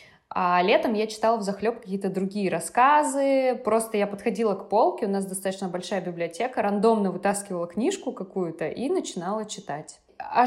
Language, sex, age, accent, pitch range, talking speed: Russian, female, 20-39, native, 175-215 Hz, 155 wpm